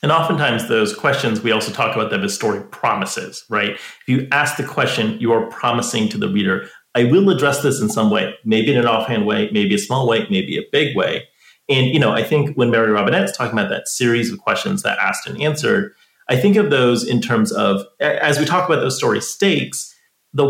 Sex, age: male, 30-49